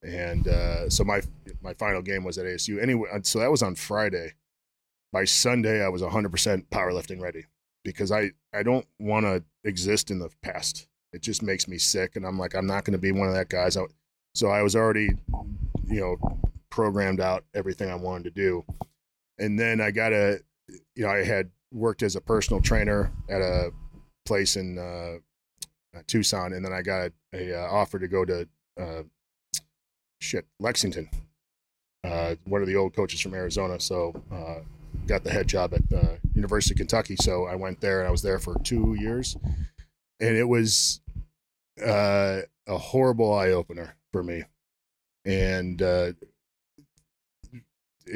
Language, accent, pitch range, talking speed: English, American, 90-110 Hz, 170 wpm